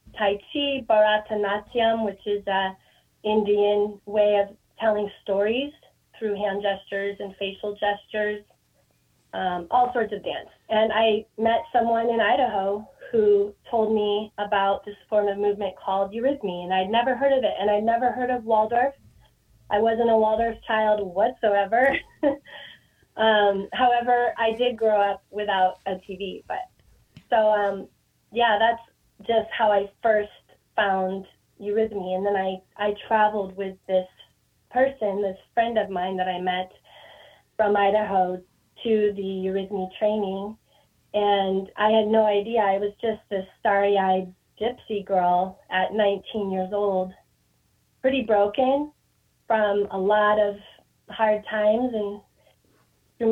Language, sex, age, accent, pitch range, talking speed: English, female, 20-39, American, 195-225 Hz, 140 wpm